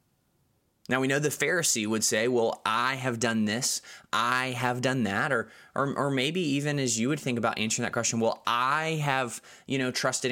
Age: 20-39